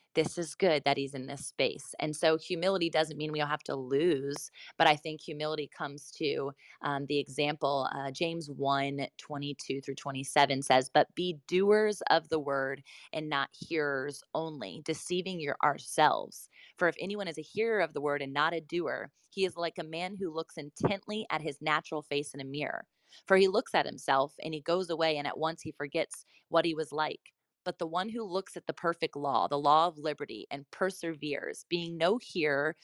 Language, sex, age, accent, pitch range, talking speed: English, female, 20-39, American, 145-175 Hz, 205 wpm